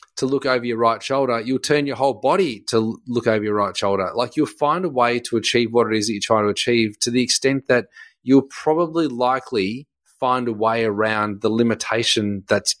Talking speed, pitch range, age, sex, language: 215 wpm, 110-135 Hz, 30-49, male, English